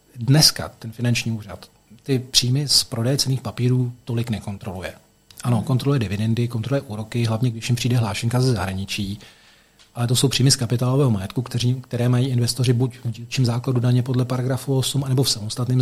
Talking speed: 170 wpm